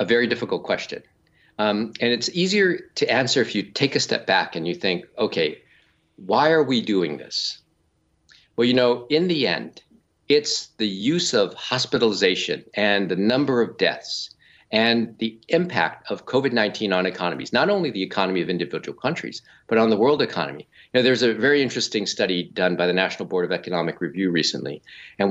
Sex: male